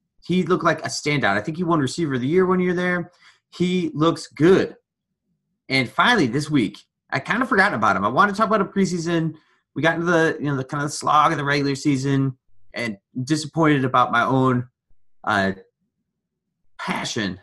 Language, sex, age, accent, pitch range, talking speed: English, male, 30-49, American, 125-170 Hz, 195 wpm